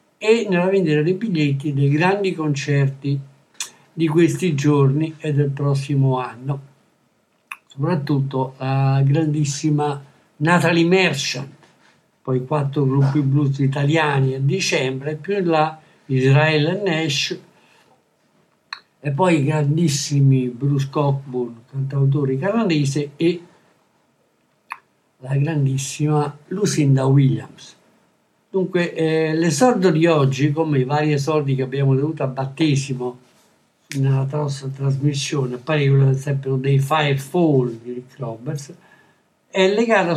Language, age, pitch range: Italian, 60-79, 135-160 Hz